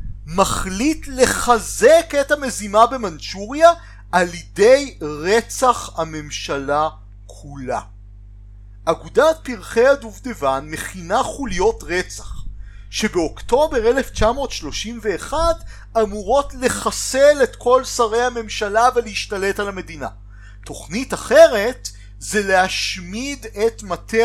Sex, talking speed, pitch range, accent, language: male, 80 wpm, 145-240 Hz, native, Hebrew